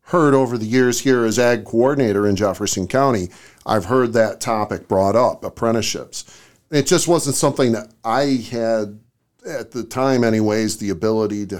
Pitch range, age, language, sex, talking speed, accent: 105-135 Hz, 50-69, English, male, 165 wpm, American